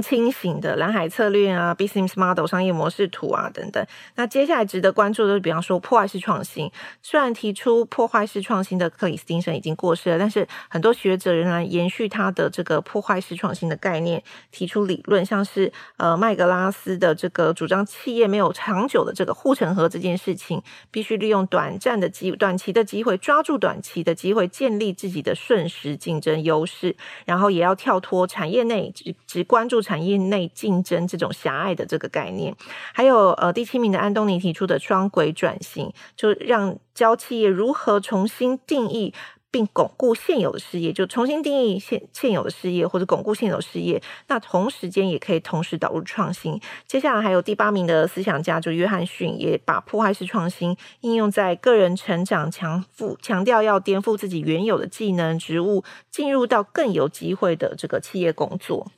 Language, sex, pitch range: Chinese, female, 175-220 Hz